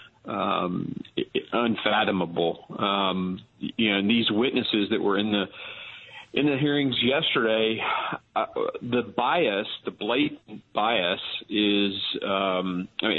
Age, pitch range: 40-59, 100-115 Hz